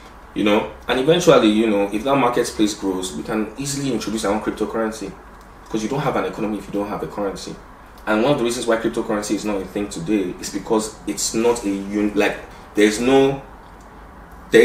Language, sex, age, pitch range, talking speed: English, male, 20-39, 95-115 Hz, 215 wpm